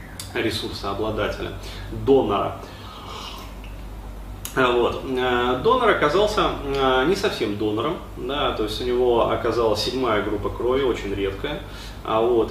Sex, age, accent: male, 20-39, native